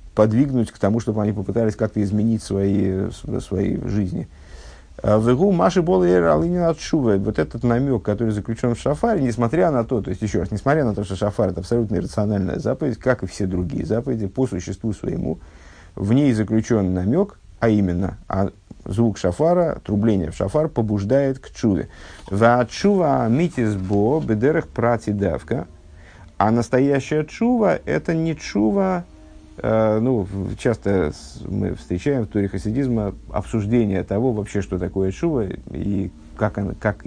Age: 50-69